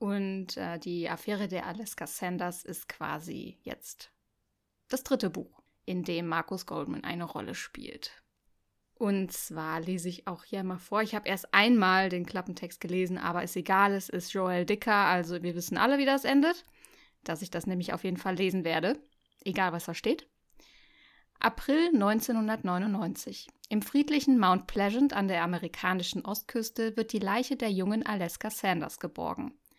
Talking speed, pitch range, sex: 160 wpm, 185-235 Hz, female